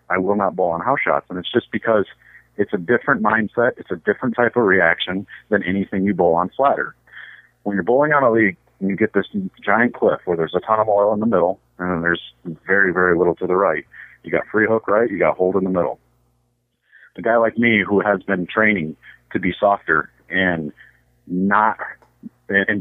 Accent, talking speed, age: American, 215 wpm, 40-59